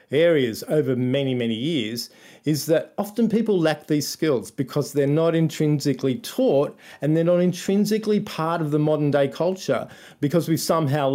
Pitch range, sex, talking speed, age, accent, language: 130-165 Hz, male, 160 wpm, 40-59, Australian, English